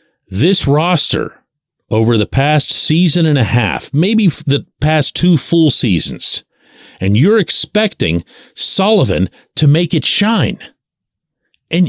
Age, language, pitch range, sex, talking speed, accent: 50-69, English, 140-220 Hz, male, 120 wpm, American